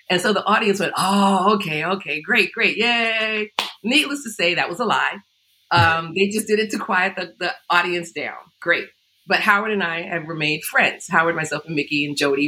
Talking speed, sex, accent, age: 205 wpm, female, American, 40-59